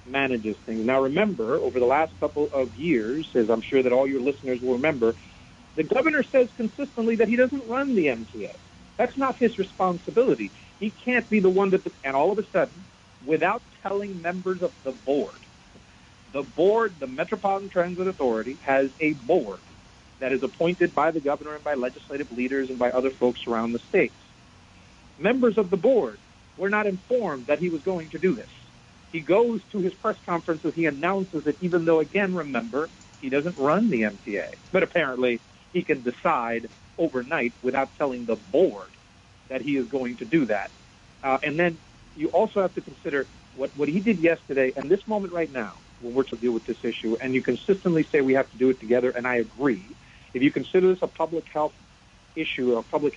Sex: male